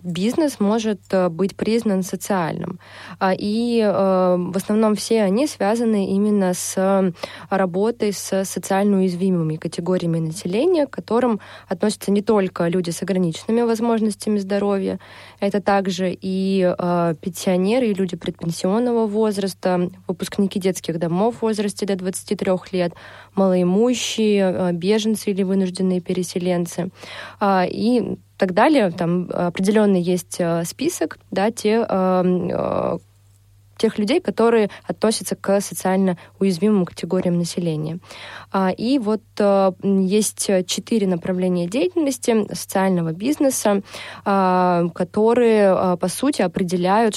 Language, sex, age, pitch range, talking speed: Russian, female, 20-39, 180-210 Hz, 100 wpm